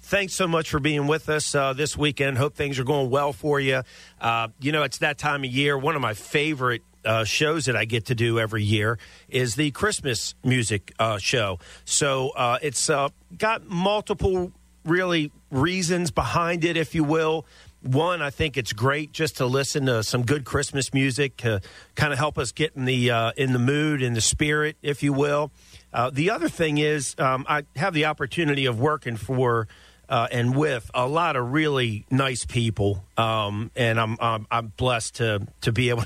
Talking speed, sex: 195 wpm, male